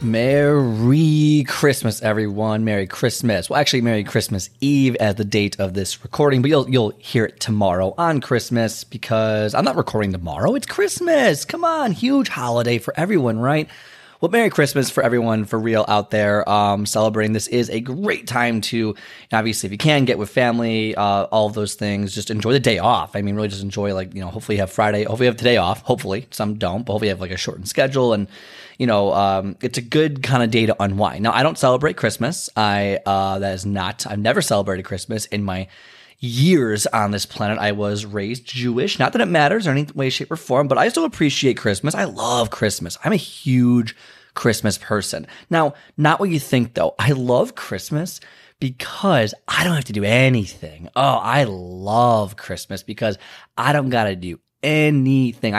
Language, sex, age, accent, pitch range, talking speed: English, male, 20-39, American, 105-140 Hz, 205 wpm